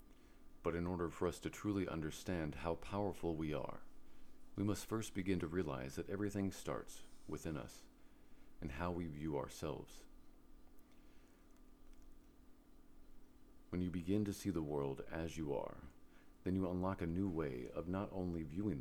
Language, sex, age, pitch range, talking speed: English, male, 40-59, 80-110 Hz, 155 wpm